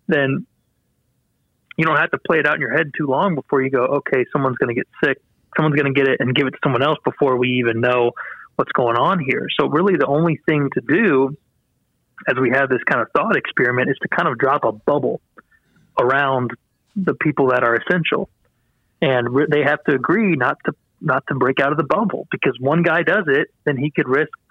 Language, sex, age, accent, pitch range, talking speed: English, male, 30-49, American, 130-155 Hz, 225 wpm